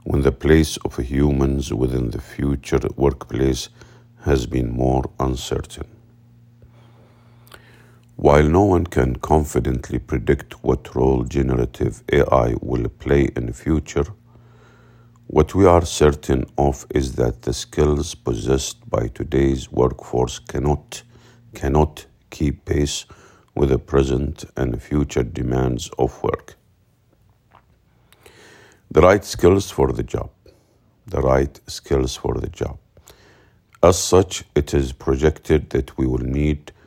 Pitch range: 65-95 Hz